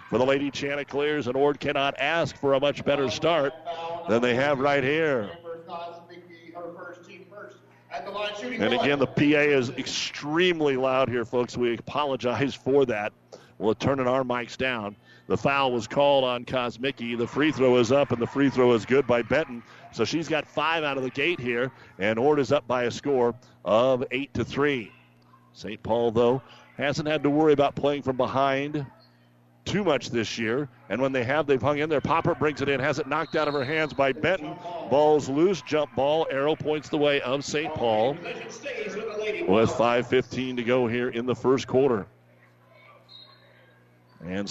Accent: American